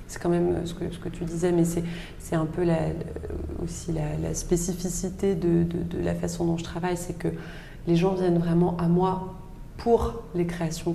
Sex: female